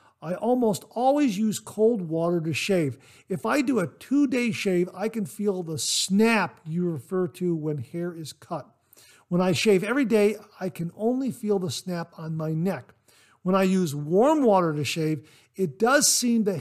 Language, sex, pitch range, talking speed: English, male, 160-210 Hz, 185 wpm